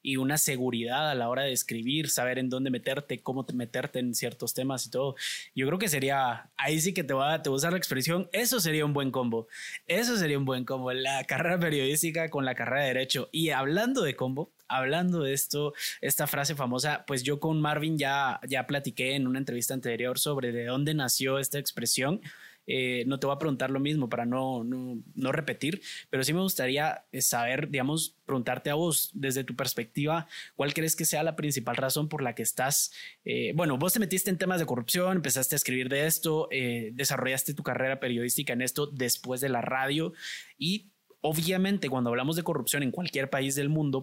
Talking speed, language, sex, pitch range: 200 wpm, Spanish, male, 130-160 Hz